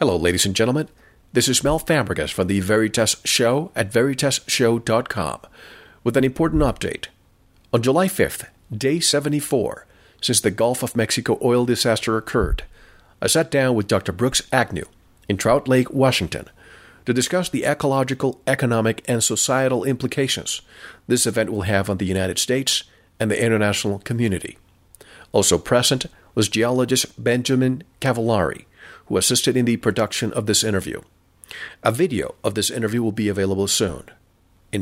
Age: 50-69